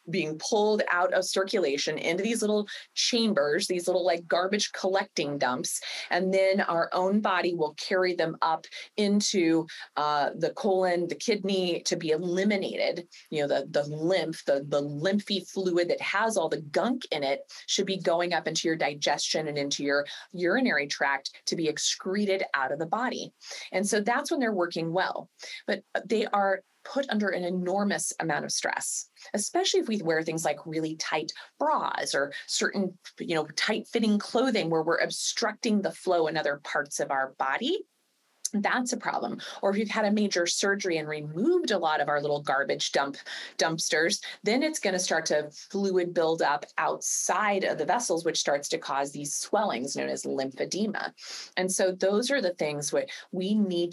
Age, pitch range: 30-49, 160-205 Hz